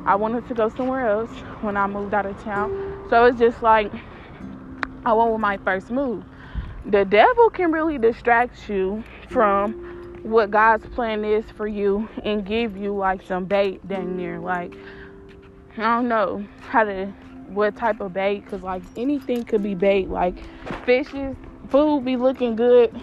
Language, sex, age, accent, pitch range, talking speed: English, female, 10-29, American, 200-230 Hz, 170 wpm